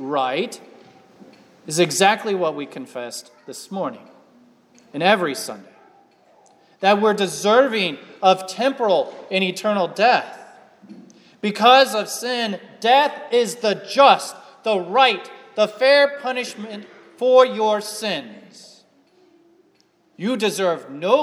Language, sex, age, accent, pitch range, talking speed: English, male, 40-59, American, 180-260 Hz, 105 wpm